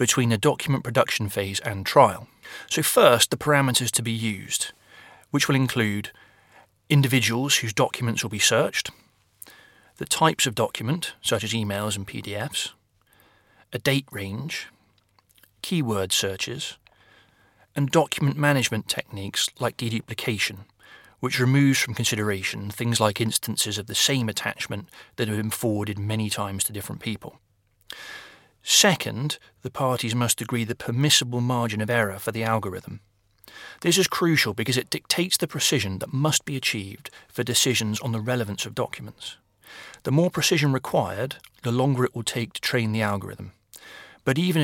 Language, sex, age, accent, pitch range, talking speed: English, male, 30-49, British, 105-135 Hz, 150 wpm